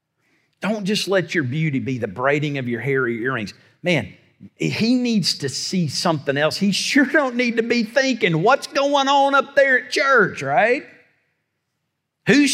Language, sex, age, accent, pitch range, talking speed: English, male, 50-69, American, 150-230 Hz, 170 wpm